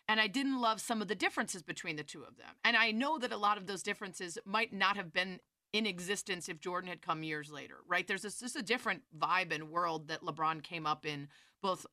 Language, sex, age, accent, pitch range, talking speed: English, female, 30-49, American, 175-230 Hz, 240 wpm